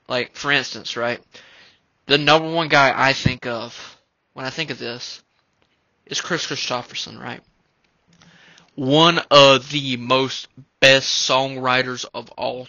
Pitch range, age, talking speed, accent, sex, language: 130-160 Hz, 20-39, 130 wpm, American, male, English